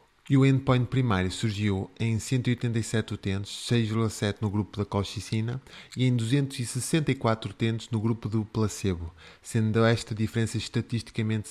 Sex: male